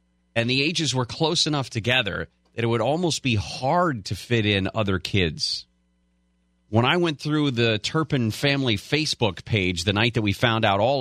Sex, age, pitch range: male, 40-59, 80-130 Hz